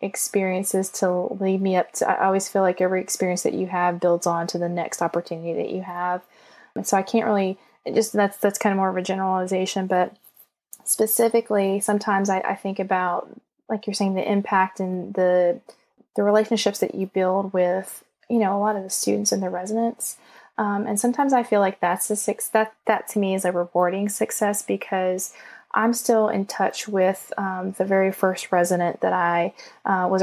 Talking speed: 200 wpm